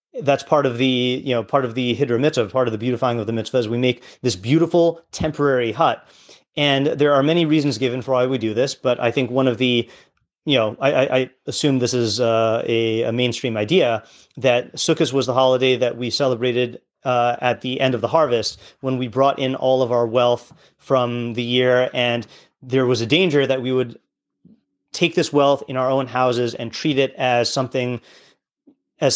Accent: American